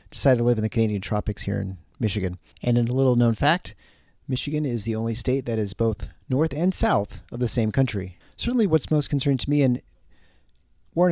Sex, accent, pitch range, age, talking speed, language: male, American, 105-135 Hz, 40-59, 205 wpm, English